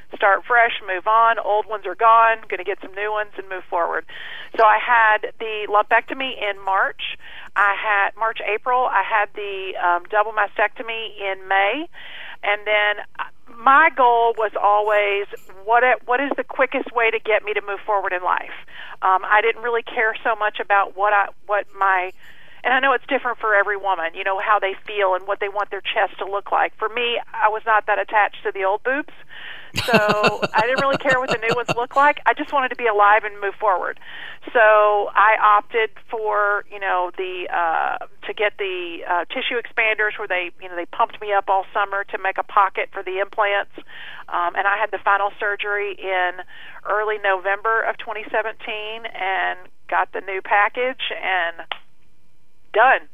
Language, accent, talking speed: English, American, 195 wpm